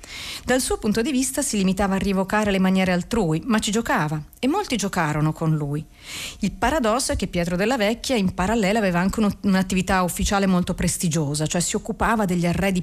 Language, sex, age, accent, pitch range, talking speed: Italian, female, 40-59, native, 170-220 Hz, 185 wpm